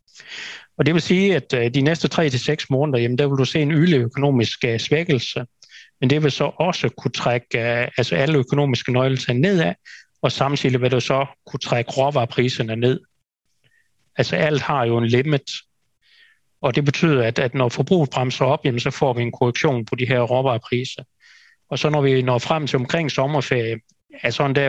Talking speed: 195 wpm